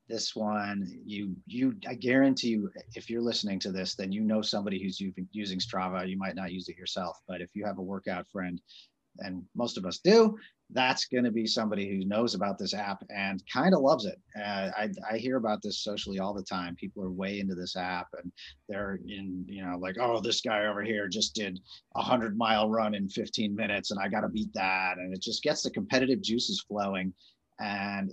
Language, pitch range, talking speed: English, 95-110 Hz, 220 wpm